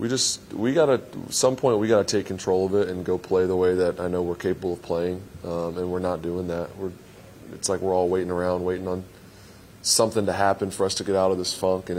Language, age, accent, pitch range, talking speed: English, 20-39, American, 90-100 Hz, 255 wpm